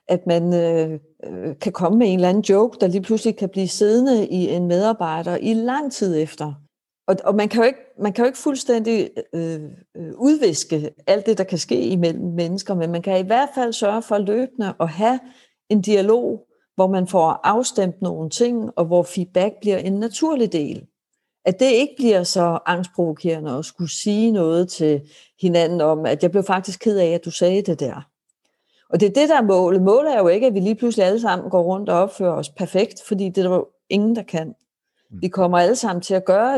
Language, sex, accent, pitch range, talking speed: Danish, female, native, 170-220 Hz, 215 wpm